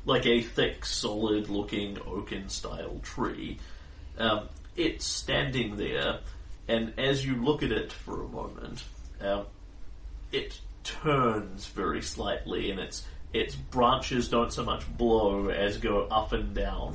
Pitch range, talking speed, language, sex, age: 85-120 Hz, 130 wpm, English, male, 40-59